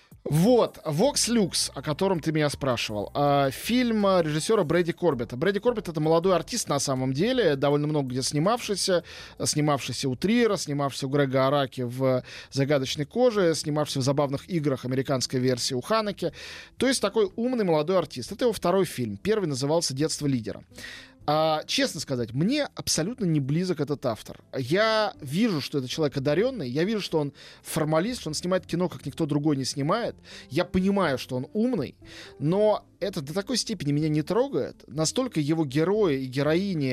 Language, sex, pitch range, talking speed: Russian, male, 145-200 Hz, 165 wpm